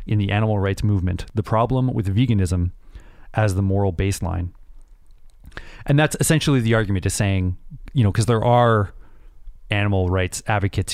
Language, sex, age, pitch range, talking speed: English, male, 30-49, 95-115 Hz, 155 wpm